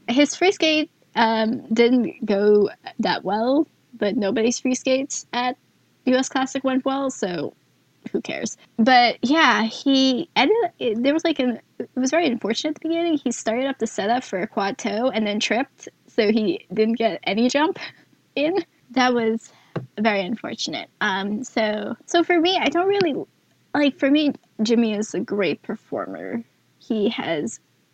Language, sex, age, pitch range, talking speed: English, female, 10-29, 215-275 Hz, 165 wpm